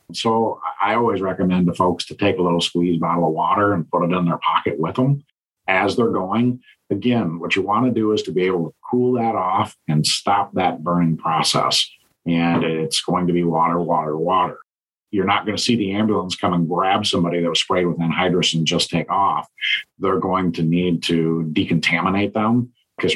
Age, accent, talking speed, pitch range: 50-69, American, 205 wpm, 80-95 Hz